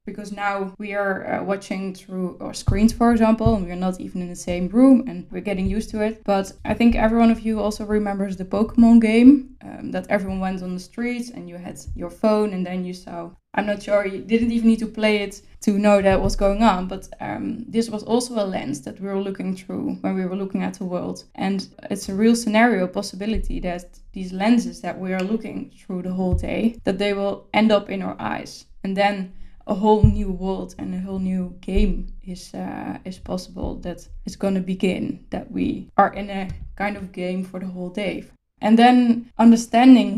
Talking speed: 220 wpm